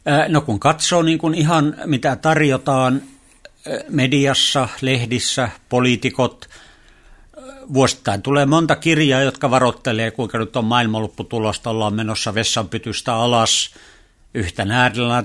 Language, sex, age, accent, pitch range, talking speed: Finnish, male, 60-79, native, 115-140 Hz, 100 wpm